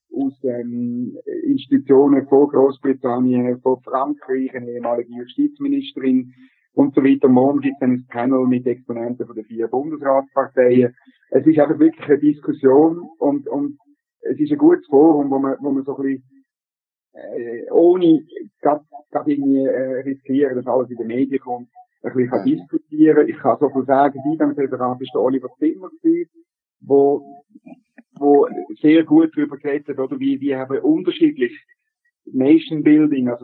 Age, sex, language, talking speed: 50-69, male, German, 155 wpm